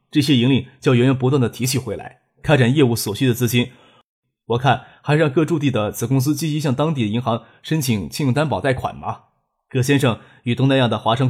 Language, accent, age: Chinese, native, 20-39